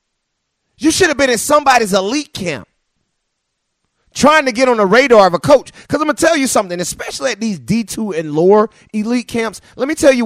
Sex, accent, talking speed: male, American, 210 wpm